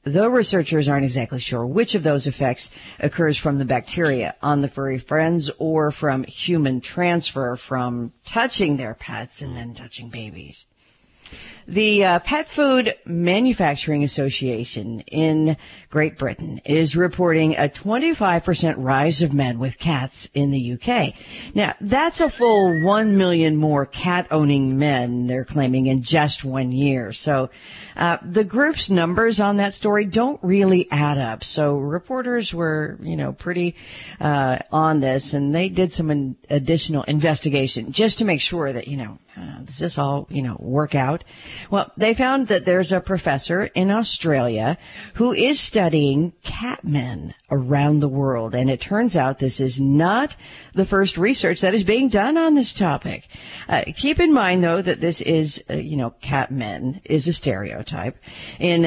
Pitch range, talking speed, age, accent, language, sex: 135-185 Hz, 170 wpm, 50-69, American, English, female